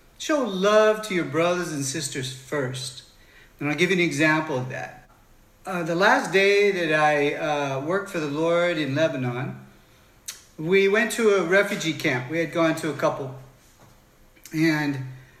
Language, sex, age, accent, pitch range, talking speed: English, male, 50-69, American, 140-190 Hz, 165 wpm